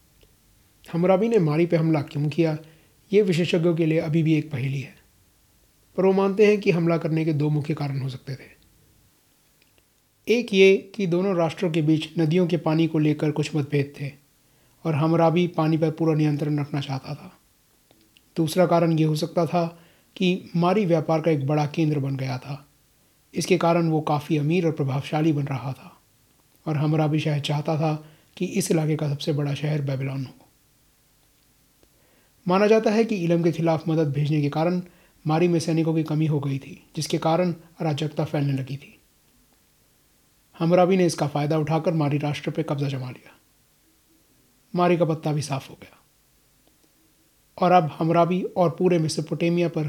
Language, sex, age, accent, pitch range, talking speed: Hindi, male, 30-49, native, 145-175 Hz, 170 wpm